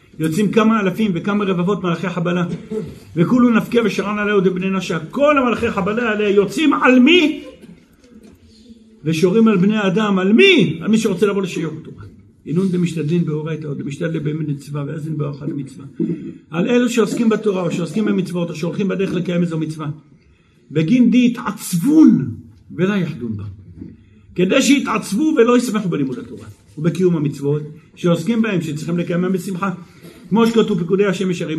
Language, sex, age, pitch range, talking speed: Hebrew, male, 50-69, 165-205 Hz, 145 wpm